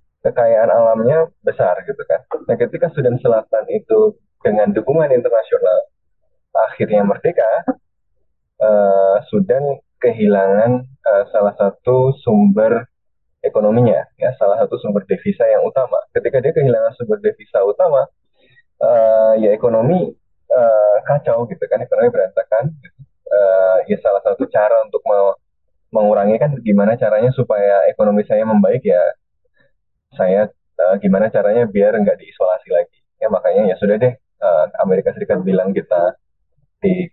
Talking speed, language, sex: 130 wpm, Indonesian, male